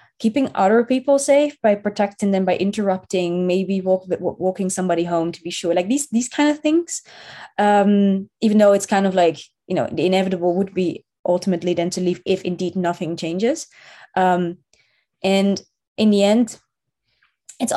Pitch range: 175-195 Hz